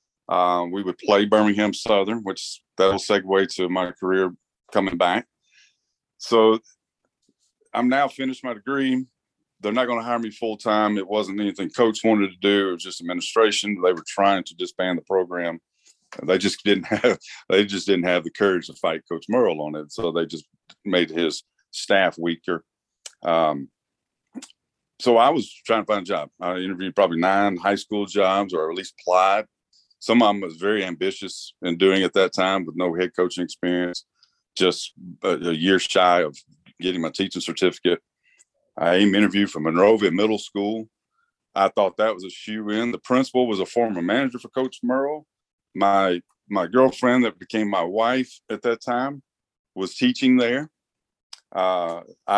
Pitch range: 95-120 Hz